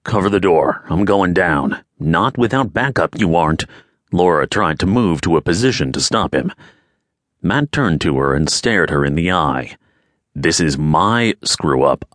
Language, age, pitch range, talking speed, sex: English, 40-59, 75-100 Hz, 175 wpm, male